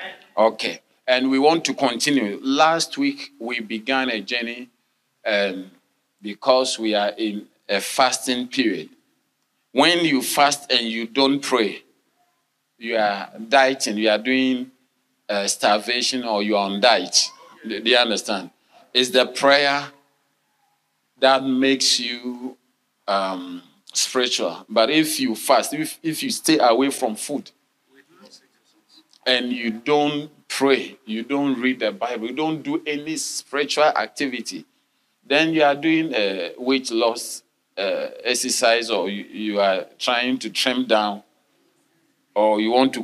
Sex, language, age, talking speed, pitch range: male, English, 40-59, 135 wpm, 115-145 Hz